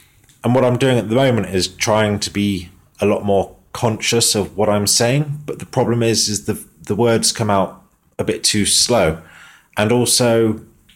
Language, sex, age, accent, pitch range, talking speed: English, male, 30-49, British, 95-120 Hz, 190 wpm